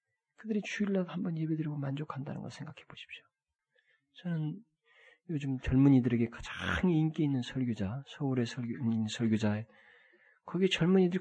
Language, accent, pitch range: Korean, native, 115-190 Hz